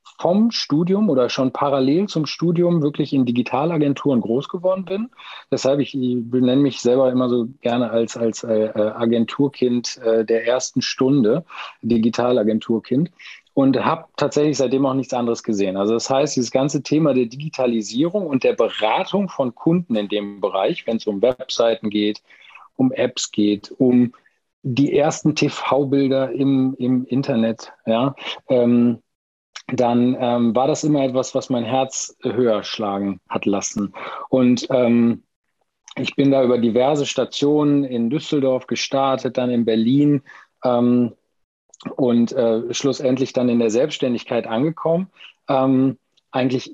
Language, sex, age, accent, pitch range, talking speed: German, male, 40-59, German, 115-140 Hz, 135 wpm